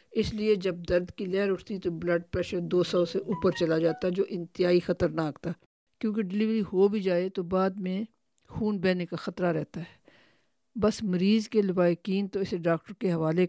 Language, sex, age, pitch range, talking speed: Urdu, female, 50-69, 175-200 Hz, 190 wpm